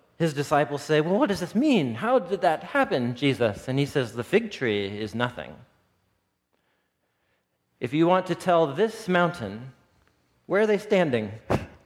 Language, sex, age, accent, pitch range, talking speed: English, male, 40-59, American, 130-205 Hz, 160 wpm